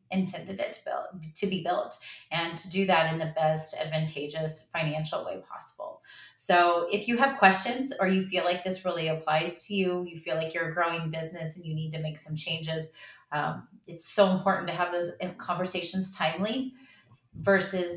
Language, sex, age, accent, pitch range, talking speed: English, female, 30-49, American, 155-180 Hz, 185 wpm